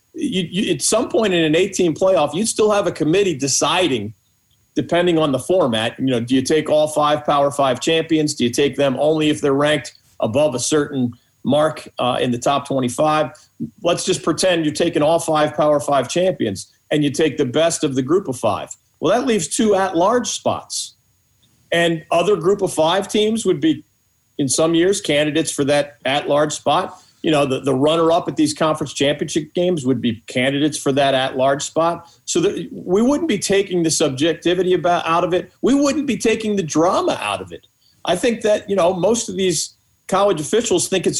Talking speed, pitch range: 200 wpm, 140-180 Hz